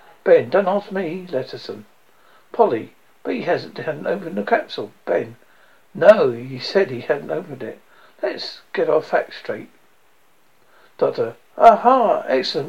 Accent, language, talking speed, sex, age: British, English, 130 wpm, male, 60-79